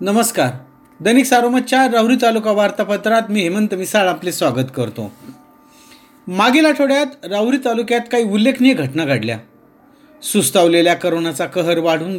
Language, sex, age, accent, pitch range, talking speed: Marathi, male, 40-59, native, 170-240 Hz, 125 wpm